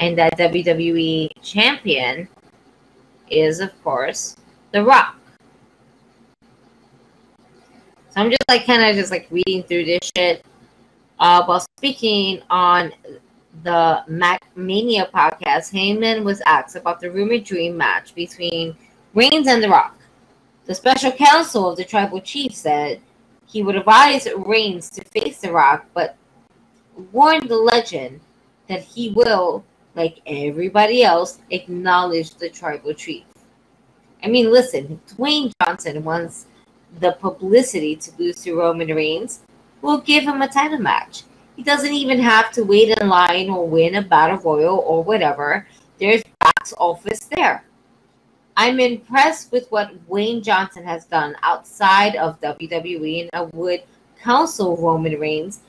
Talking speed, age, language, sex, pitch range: 135 wpm, 20-39, English, female, 170-230 Hz